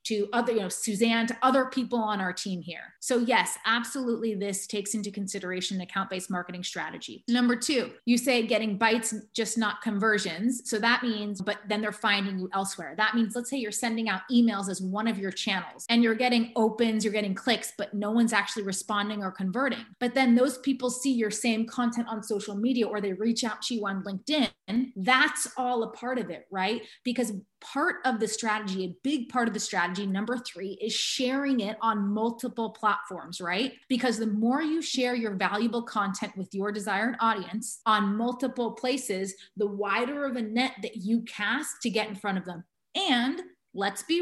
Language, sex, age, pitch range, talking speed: English, female, 30-49, 205-250 Hz, 195 wpm